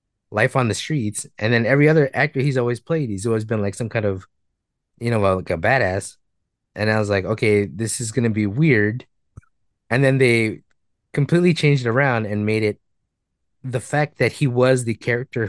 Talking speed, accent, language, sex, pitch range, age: 200 wpm, American, English, male, 100-125 Hz, 20-39